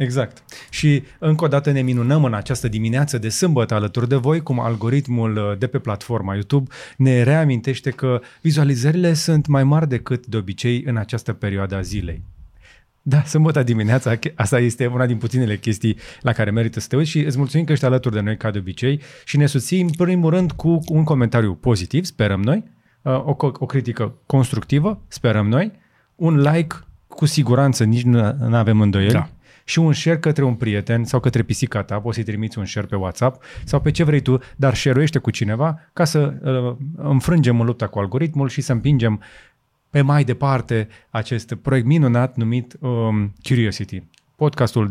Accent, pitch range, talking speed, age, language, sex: native, 110-145 Hz, 180 wpm, 30-49, Romanian, male